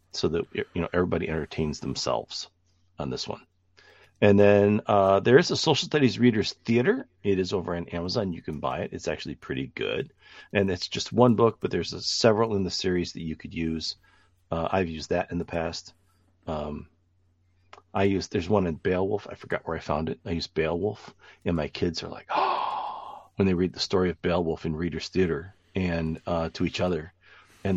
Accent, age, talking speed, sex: American, 40-59, 205 wpm, male